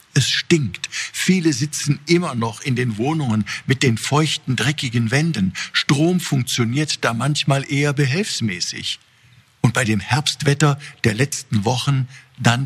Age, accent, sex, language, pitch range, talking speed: 50-69, German, male, German, 120-155 Hz, 135 wpm